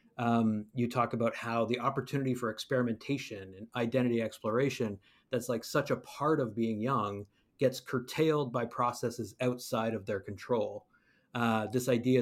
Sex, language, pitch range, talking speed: male, English, 110-130 Hz, 150 wpm